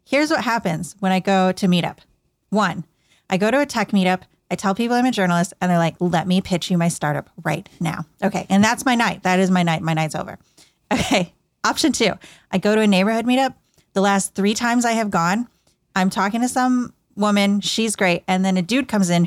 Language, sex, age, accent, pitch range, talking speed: English, female, 30-49, American, 180-225 Hz, 225 wpm